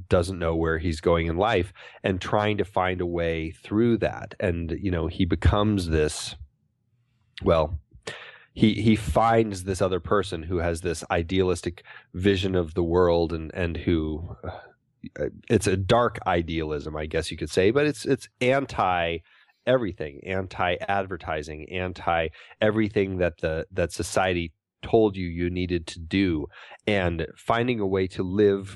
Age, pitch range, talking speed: 30-49, 85-105 Hz, 155 wpm